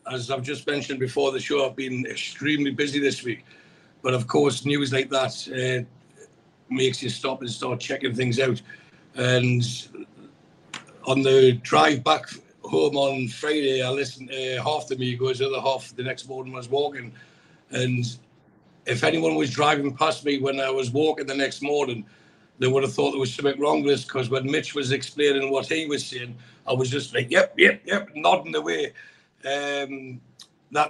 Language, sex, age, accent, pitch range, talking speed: English, male, 60-79, British, 130-145 Hz, 185 wpm